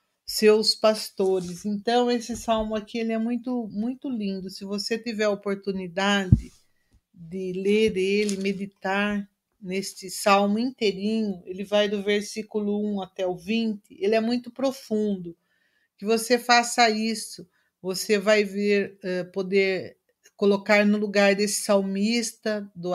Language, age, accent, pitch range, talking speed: Portuguese, 50-69, Brazilian, 190-220 Hz, 130 wpm